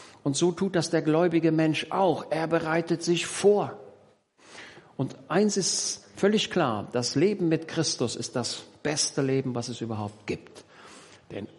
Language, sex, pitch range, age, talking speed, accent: German, male, 125-175 Hz, 50-69, 155 wpm, German